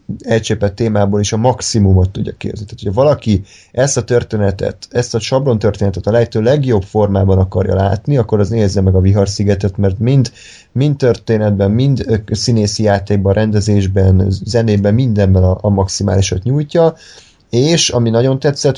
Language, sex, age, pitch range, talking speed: Hungarian, male, 30-49, 100-120 Hz, 150 wpm